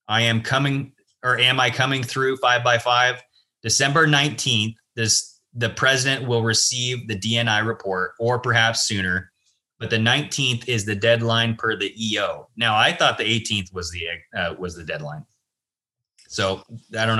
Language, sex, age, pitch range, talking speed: English, male, 20-39, 110-135 Hz, 165 wpm